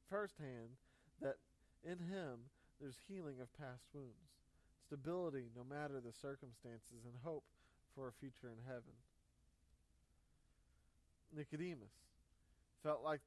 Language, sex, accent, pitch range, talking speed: English, male, American, 125-155 Hz, 110 wpm